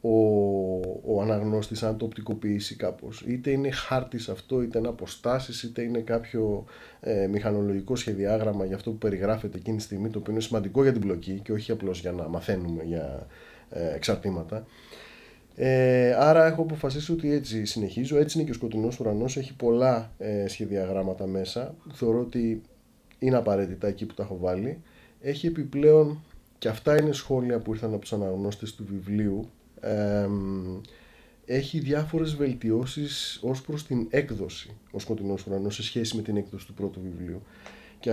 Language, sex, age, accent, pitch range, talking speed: Greek, male, 30-49, native, 100-130 Hz, 155 wpm